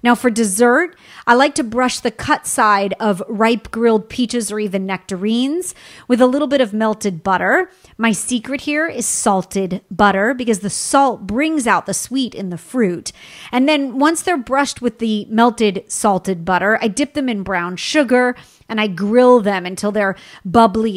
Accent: American